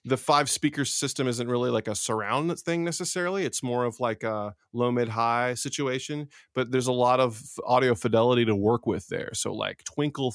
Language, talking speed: English, 190 wpm